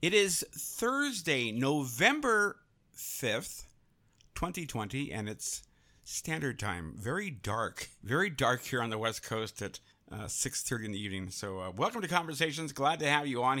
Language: English